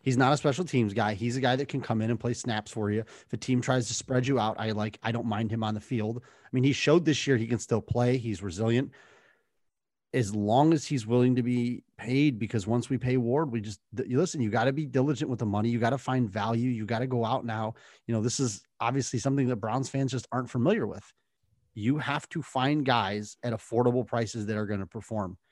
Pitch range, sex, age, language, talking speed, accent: 110-130 Hz, male, 30-49, English, 255 wpm, American